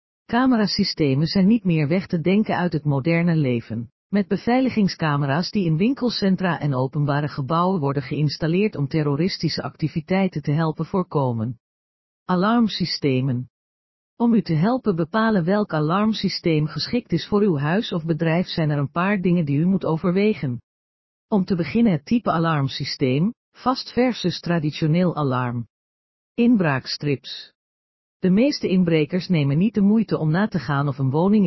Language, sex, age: Dutch, female, 50-69